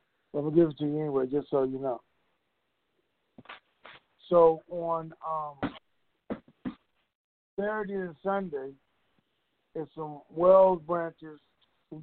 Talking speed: 115 wpm